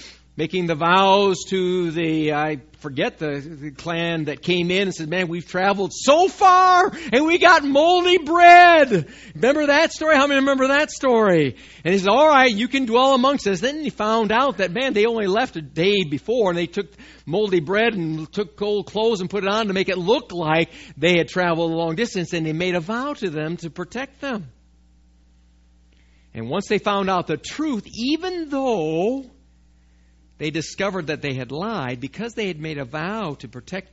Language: English